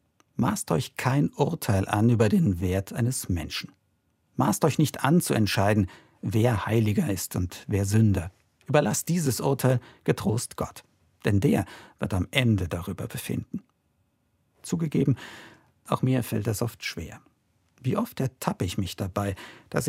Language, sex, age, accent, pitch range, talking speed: German, male, 50-69, German, 100-130 Hz, 145 wpm